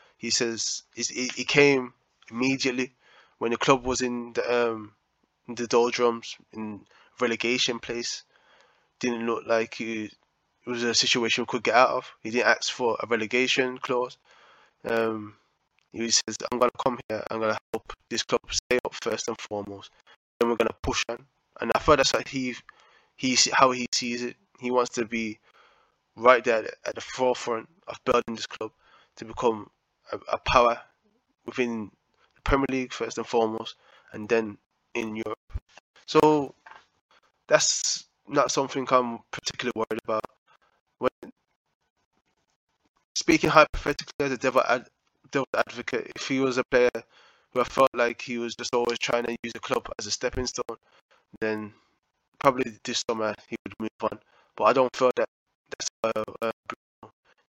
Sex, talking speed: male, 165 wpm